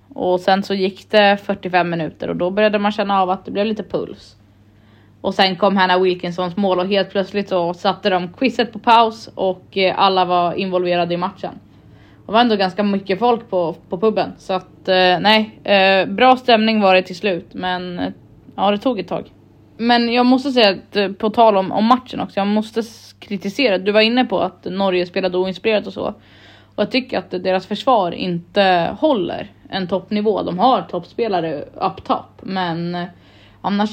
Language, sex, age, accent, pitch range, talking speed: Swedish, female, 20-39, native, 175-210 Hz, 185 wpm